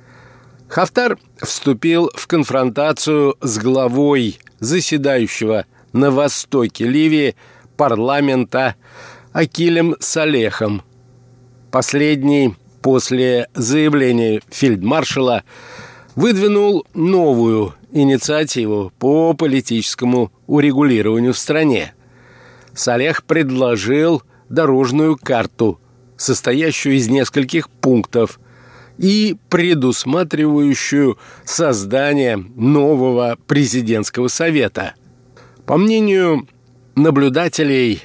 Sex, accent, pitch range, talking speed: male, native, 125-155 Hz, 65 wpm